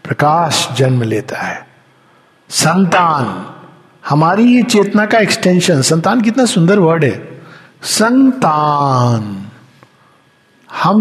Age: 60-79